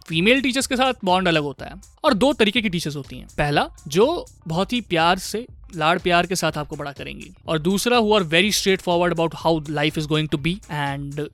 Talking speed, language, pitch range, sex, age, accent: 220 wpm, Hindi, 165-225 Hz, male, 20-39, native